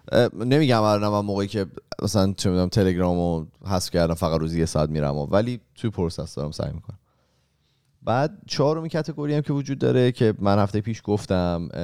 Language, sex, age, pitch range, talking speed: Persian, male, 30-49, 90-120 Hz, 190 wpm